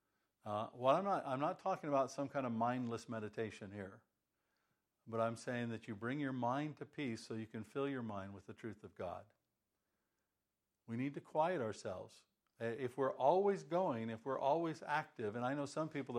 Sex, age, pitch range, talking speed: male, 50-69, 115-140 Hz, 195 wpm